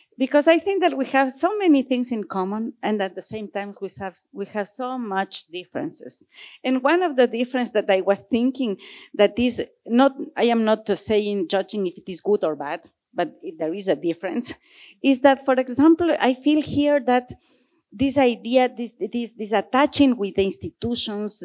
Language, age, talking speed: German, 40-59, 195 wpm